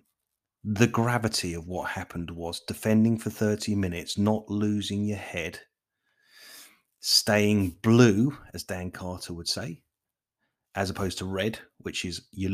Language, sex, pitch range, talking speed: English, male, 90-110 Hz, 135 wpm